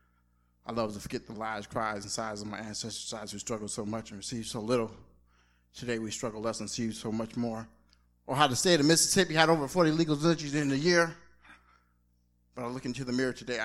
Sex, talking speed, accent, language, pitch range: male, 230 wpm, American, English, 100-135 Hz